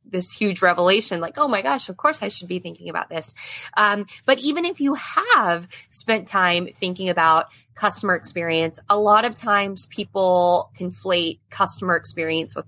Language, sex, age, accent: English, female, 20-39, American